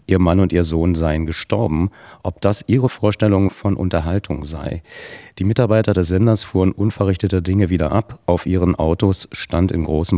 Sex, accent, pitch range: male, German, 90-105 Hz